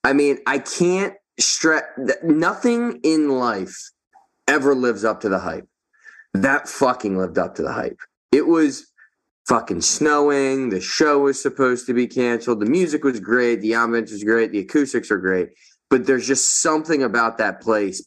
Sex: male